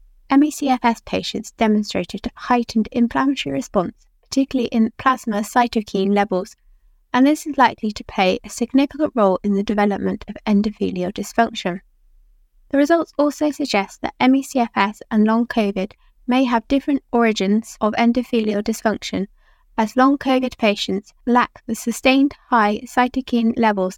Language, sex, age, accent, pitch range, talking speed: English, female, 20-39, British, 200-250 Hz, 135 wpm